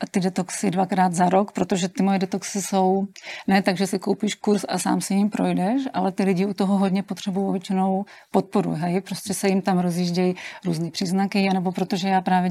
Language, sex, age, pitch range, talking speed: Czech, female, 40-59, 185-200 Hz, 200 wpm